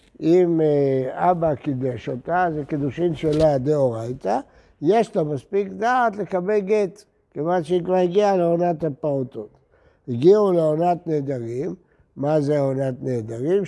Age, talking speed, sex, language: 60-79, 105 wpm, male, Hebrew